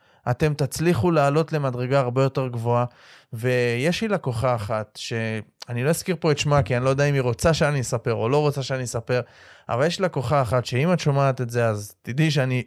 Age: 20-39